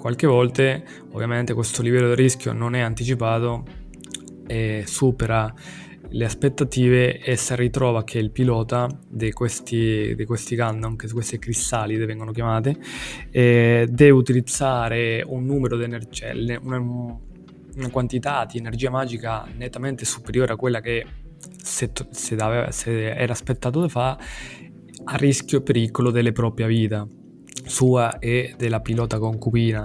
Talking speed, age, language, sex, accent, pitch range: 135 wpm, 20-39, Italian, male, native, 115-125 Hz